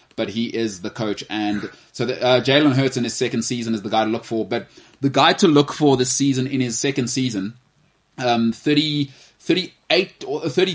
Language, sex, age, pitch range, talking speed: English, male, 20-39, 115-135 Hz, 220 wpm